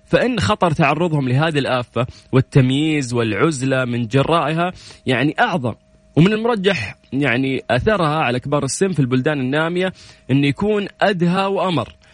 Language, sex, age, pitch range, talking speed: Arabic, male, 20-39, 135-205 Hz, 125 wpm